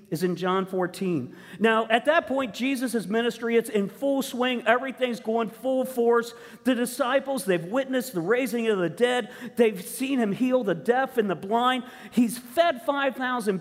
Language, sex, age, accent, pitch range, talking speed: English, male, 50-69, American, 200-275 Hz, 170 wpm